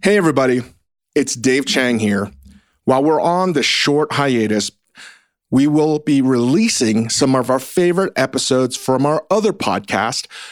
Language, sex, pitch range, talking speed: English, male, 125-160 Hz, 145 wpm